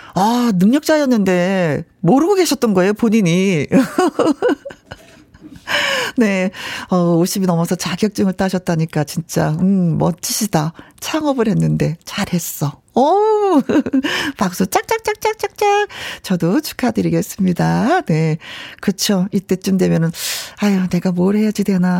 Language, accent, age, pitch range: Korean, native, 40-59, 175-235 Hz